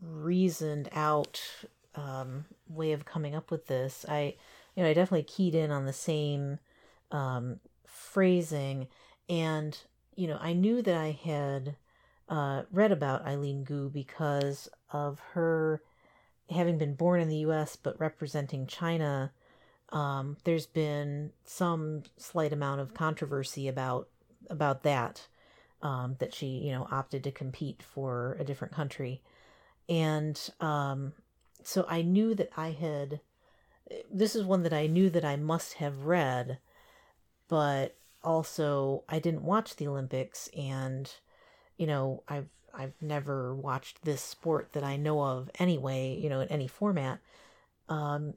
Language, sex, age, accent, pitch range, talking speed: English, female, 40-59, American, 140-165 Hz, 145 wpm